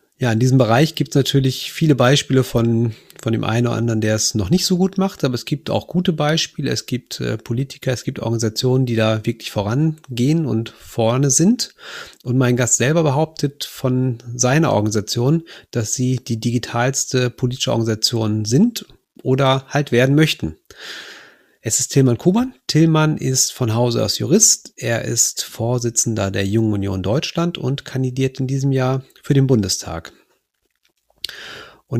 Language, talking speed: German, 160 wpm